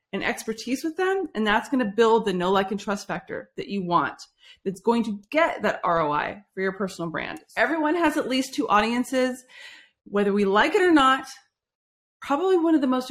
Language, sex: English, female